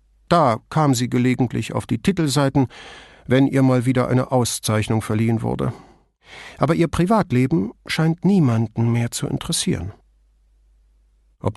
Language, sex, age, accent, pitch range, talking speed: English, male, 50-69, German, 95-135 Hz, 125 wpm